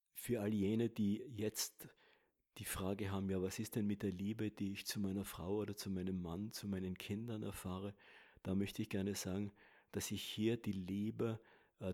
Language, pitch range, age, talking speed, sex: German, 95-110 Hz, 50-69, 195 wpm, male